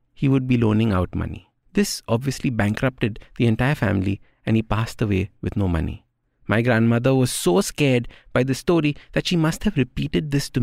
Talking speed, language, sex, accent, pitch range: 190 wpm, English, male, Indian, 105-145 Hz